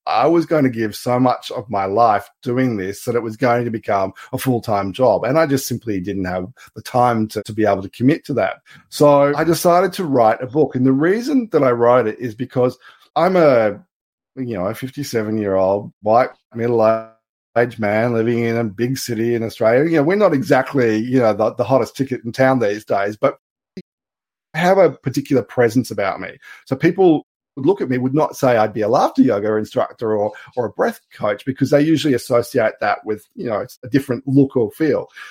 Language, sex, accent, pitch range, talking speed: English, male, Australian, 110-135 Hz, 220 wpm